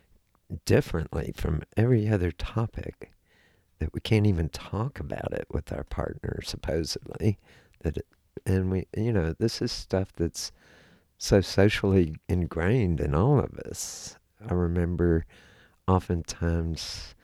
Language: English